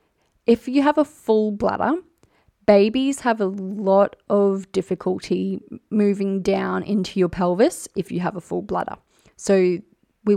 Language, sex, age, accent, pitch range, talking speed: English, female, 20-39, Australian, 180-215 Hz, 145 wpm